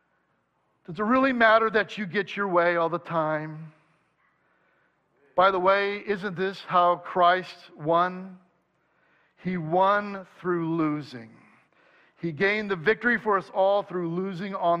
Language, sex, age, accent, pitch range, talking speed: English, male, 50-69, American, 145-200 Hz, 140 wpm